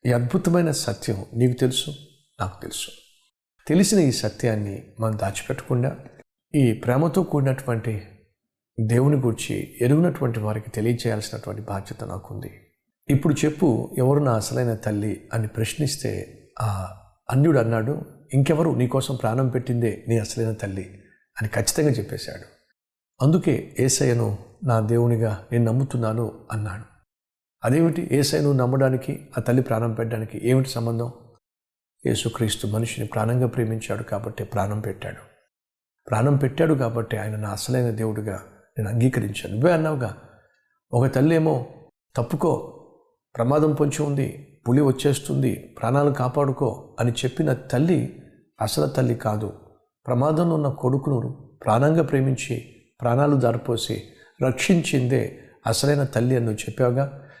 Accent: native